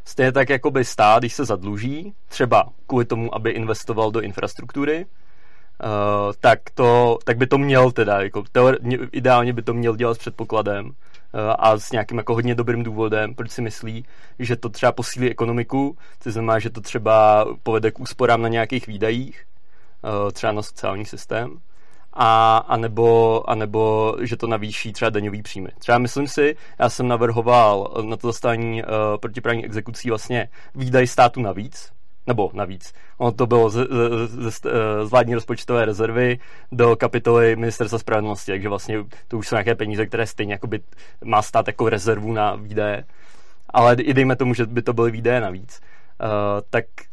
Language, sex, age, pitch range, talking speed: Czech, male, 30-49, 110-125 Hz, 165 wpm